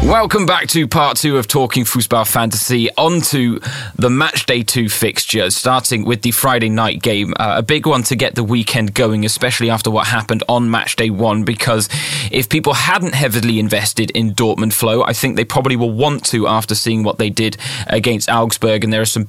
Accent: British